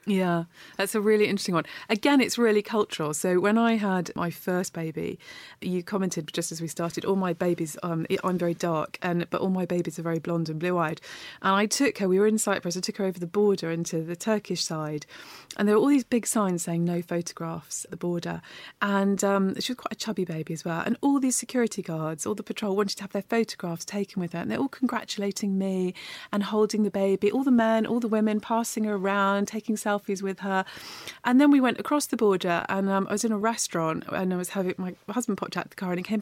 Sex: female